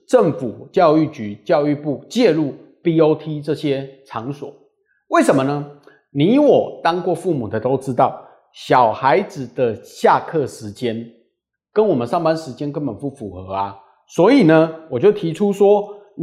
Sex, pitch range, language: male, 140-225 Hz, Chinese